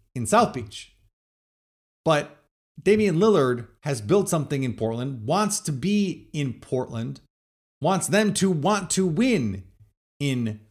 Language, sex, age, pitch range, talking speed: English, male, 30-49, 115-185 Hz, 130 wpm